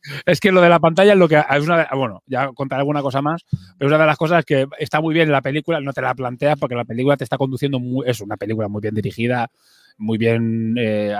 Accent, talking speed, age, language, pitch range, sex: Spanish, 275 wpm, 30-49, Spanish, 120-140 Hz, male